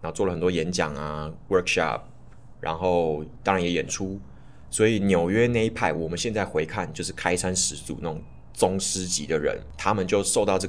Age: 20-39